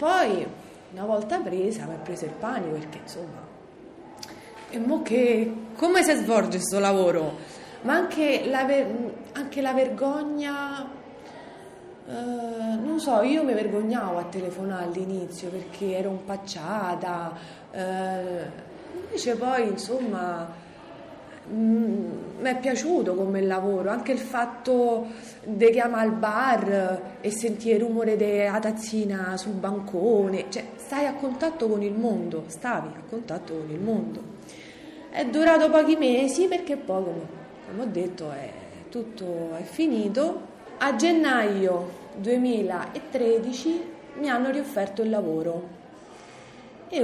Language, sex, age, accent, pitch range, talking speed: Italian, female, 30-49, native, 190-270 Hz, 120 wpm